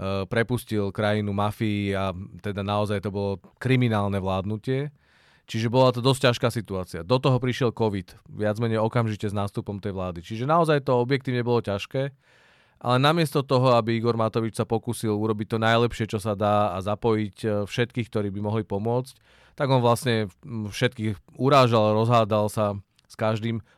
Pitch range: 105-120 Hz